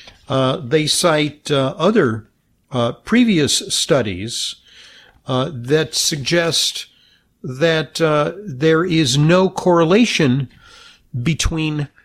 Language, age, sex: English, 50-69, male